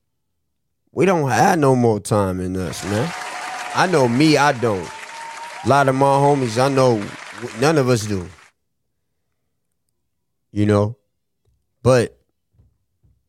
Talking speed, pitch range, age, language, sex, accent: 125 wpm, 110-135 Hz, 20-39, English, male, American